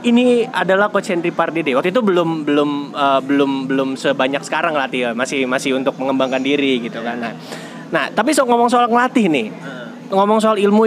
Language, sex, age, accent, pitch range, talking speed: Indonesian, male, 20-39, native, 150-215 Hz, 175 wpm